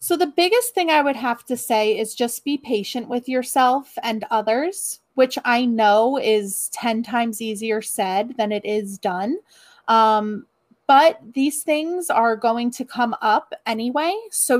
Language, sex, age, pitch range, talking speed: English, female, 30-49, 215-270 Hz, 165 wpm